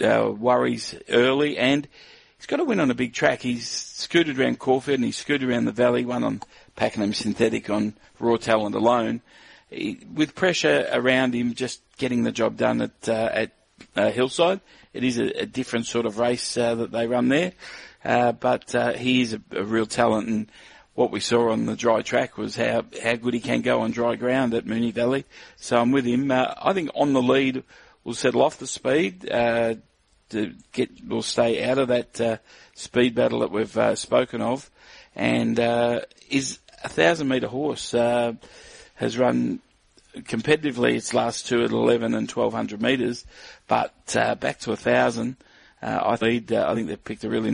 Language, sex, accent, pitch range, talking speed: English, male, Australian, 115-130 Hz, 195 wpm